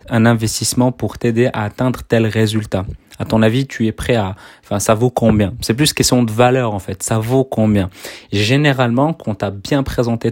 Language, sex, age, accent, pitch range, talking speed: French, male, 30-49, French, 105-130 Hz, 200 wpm